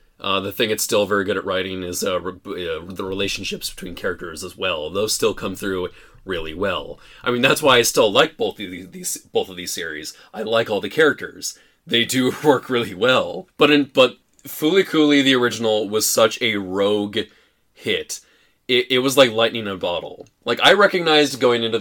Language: English